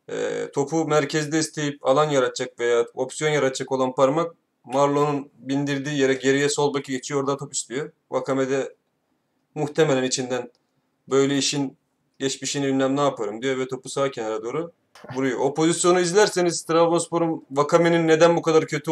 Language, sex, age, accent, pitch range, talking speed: Turkish, male, 30-49, native, 135-165 Hz, 145 wpm